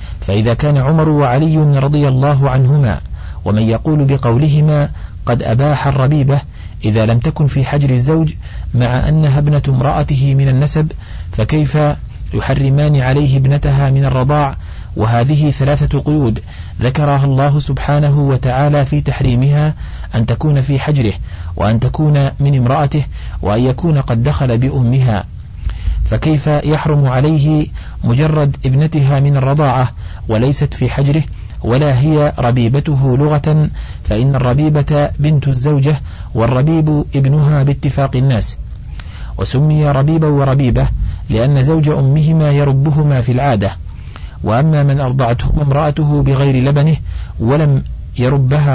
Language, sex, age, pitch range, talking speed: Arabic, male, 40-59, 115-145 Hz, 115 wpm